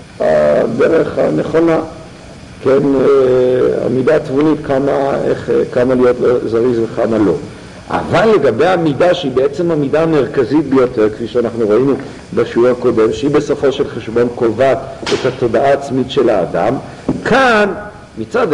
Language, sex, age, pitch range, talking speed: English, male, 50-69, 115-150 Hz, 120 wpm